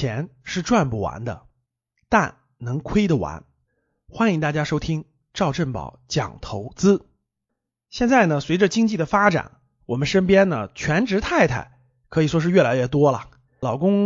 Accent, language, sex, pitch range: native, Chinese, male, 135-215 Hz